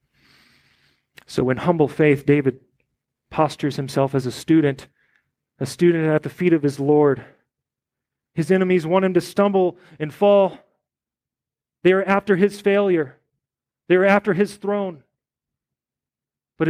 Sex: male